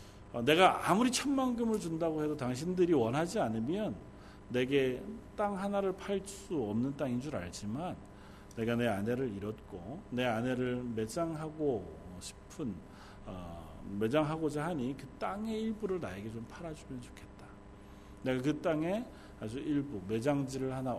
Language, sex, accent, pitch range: Korean, male, native, 100-160 Hz